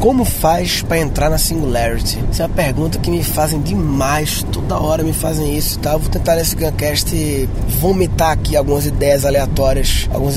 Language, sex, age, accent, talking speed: Portuguese, male, 20-39, Brazilian, 190 wpm